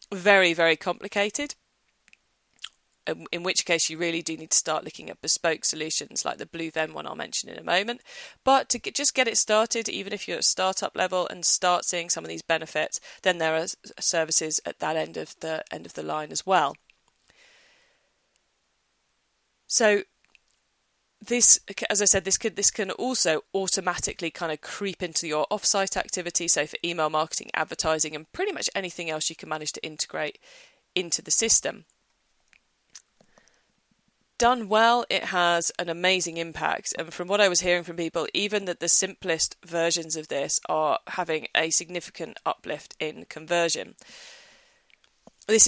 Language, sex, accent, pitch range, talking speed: English, female, British, 160-200 Hz, 165 wpm